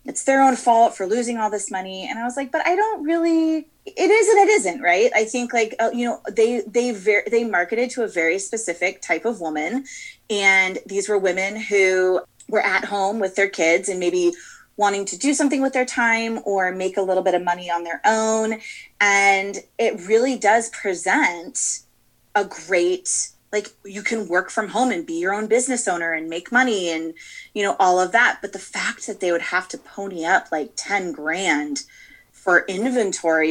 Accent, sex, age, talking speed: American, female, 20-39, 200 wpm